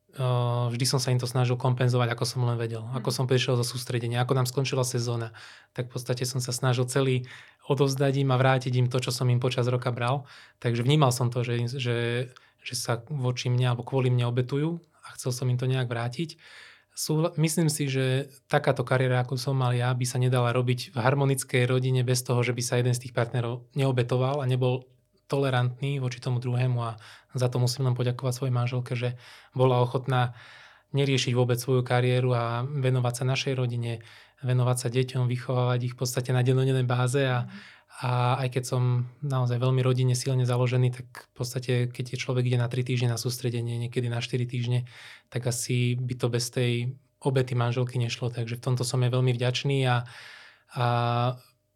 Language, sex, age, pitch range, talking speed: Slovak, male, 20-39, 125-130 Hz, 190 wpm